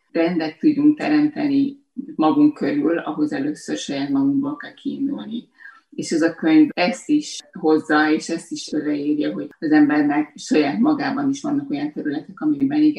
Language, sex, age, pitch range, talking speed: Hungarian, female, 30-49, 225-305 Hz, 150 wpm